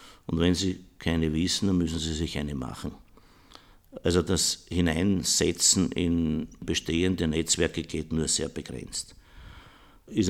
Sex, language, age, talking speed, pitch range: male, German, 60-79, 130 wpm, 80-90 Hz